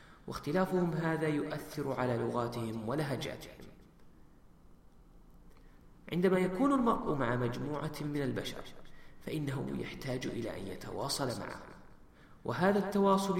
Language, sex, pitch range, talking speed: English, male, 125-165 Hz, 95 wpm